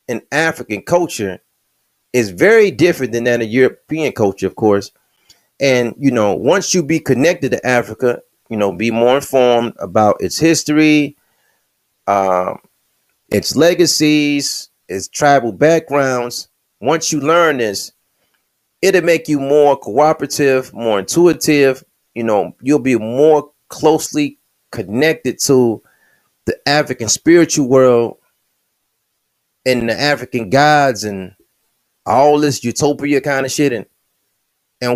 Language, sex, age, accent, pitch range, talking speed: English, male, 30-49, American, 120-160 Hz, 125 wpm